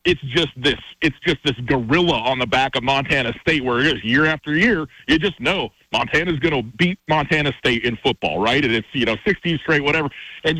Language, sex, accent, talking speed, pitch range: English, male, American, 220 wpm, 135-165 Hz